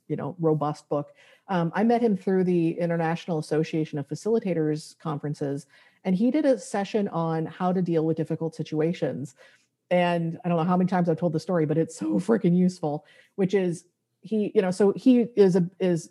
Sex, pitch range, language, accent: female, 160-190 Hz, English, American